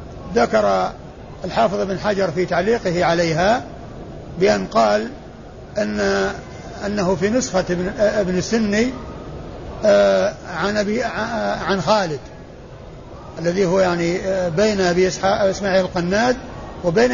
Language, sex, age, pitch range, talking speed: Arabic, male, 50-69, 180-215 Hz, 90 wpm